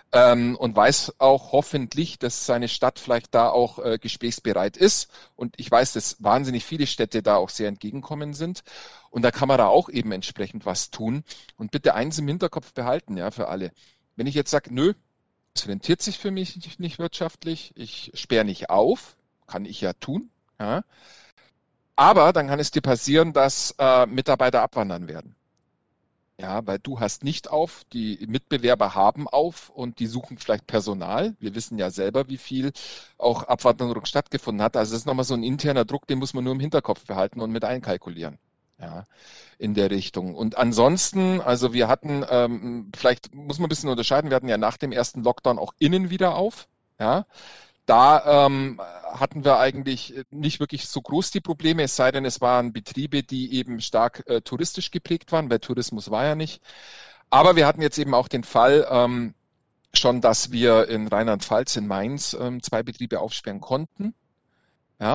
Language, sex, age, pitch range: German, male, 40-59, 115-145 Hz